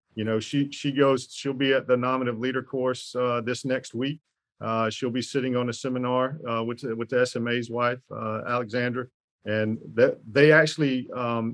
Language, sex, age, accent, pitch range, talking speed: English, male, 40-59, American, 110-125 Hz, 185 wpm